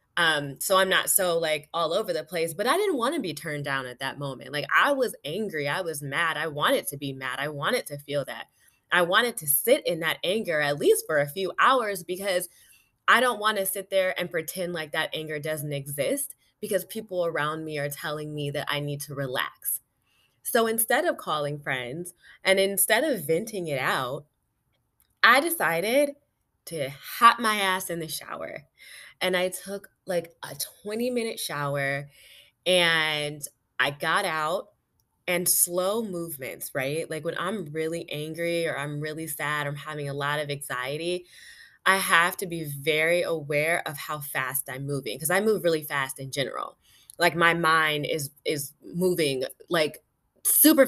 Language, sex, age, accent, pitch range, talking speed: English, female, 20-39, American, 145-190 Hz, 180 wpm